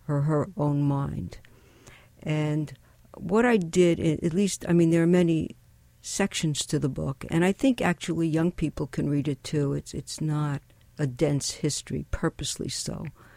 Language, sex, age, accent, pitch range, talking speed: English, female, 60-79, American, 135-175 Hz, 165 wpm